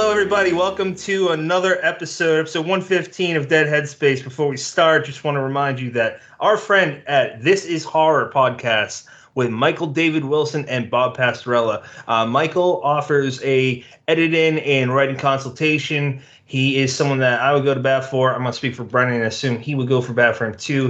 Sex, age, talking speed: male, 30-49, 195 wpm